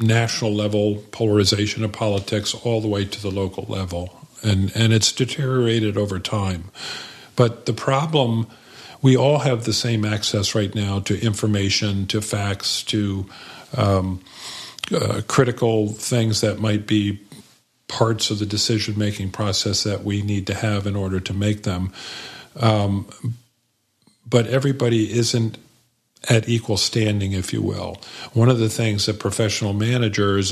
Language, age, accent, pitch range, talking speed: English, 50-69, American, 100-115 Hz, 145 wpm